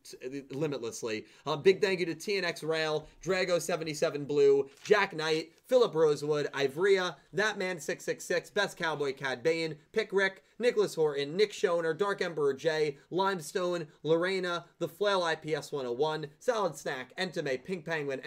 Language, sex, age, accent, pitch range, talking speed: English, male, 30-49, American, 140-190 Hz, 150 wpm